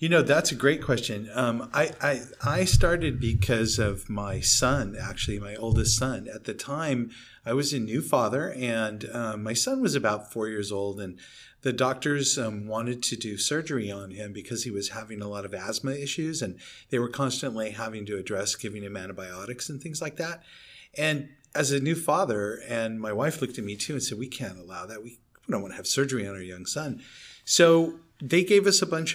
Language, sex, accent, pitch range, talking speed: English, male, American, 110-140 Hz, 210 wpm